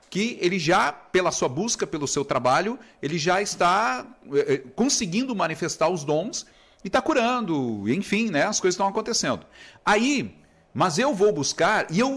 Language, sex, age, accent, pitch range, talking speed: Portuguese, male, 40-59, Brazilian, 180-240 Hz, 160 wpm